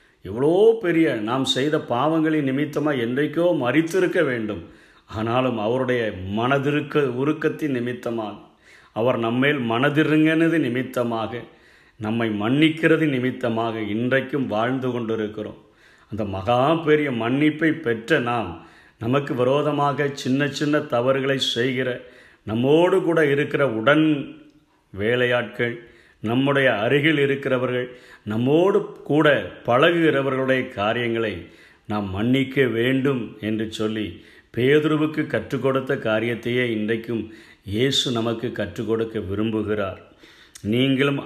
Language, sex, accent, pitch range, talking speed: Tamil, male, native, 110-145 Hz, 95 wpm